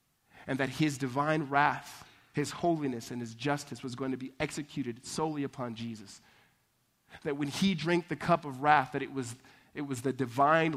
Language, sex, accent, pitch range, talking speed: English, male, American, 120-150 Hz, 185 wpm